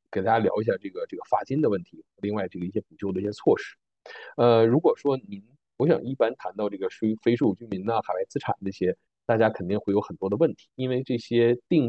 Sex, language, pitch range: male, Chinese, 100-120 Hz